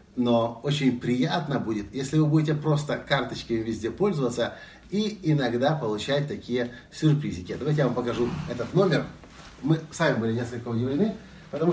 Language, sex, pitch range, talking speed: Russian, male, 120-170 Hz, 145 wpm